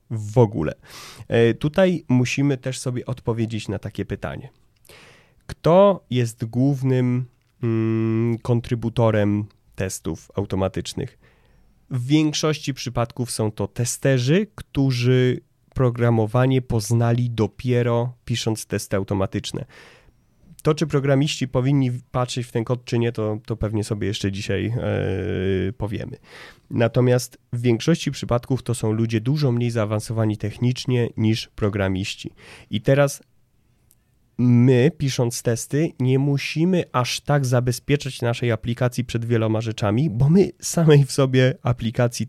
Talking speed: 115 wpm